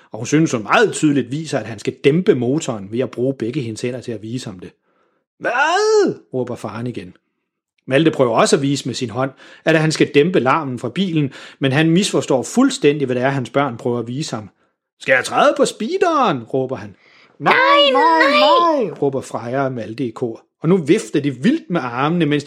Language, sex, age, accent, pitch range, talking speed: Danish, male, 30-49, native, 130-200 Hz, 215 wpm